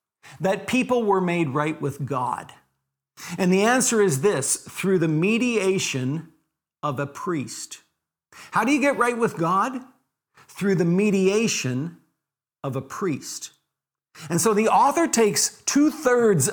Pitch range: 165-220 Hz